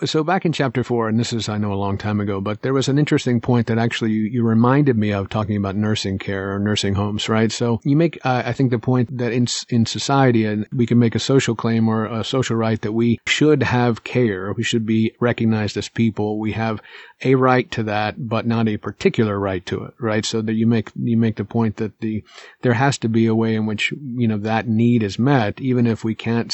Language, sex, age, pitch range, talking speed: English, male, 50-69, 110-120 Hz, 250 wpm